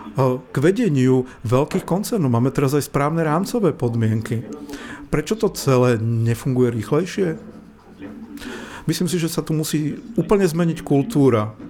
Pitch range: 125-170 Hz